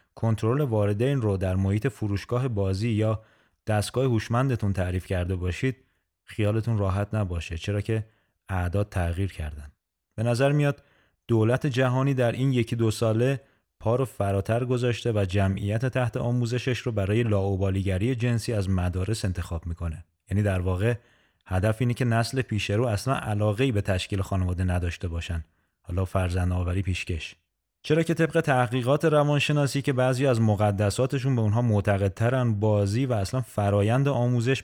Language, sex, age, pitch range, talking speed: Persian, male, 30-49, 95-125 Hz, 140 wpm